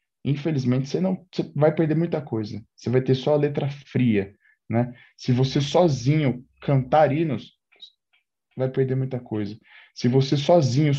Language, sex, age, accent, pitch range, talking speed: Portuguese, male, 10-29, Brazilian, 130-175 Hz, 155 wpm